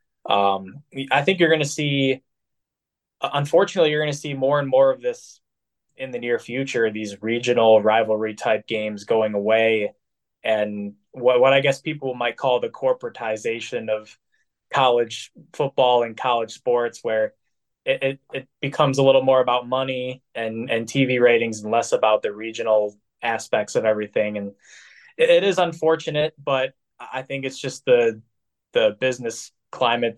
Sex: male